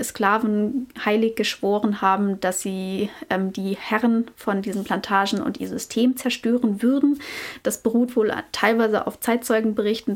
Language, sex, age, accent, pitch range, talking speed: German, female, 30-49, German, 210-245 Hz, 140 wpm